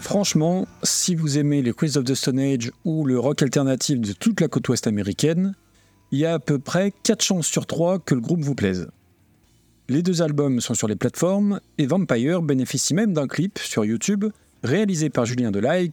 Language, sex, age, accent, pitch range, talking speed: French, male, 40-59, French, 120-180 Hz, 205 wpm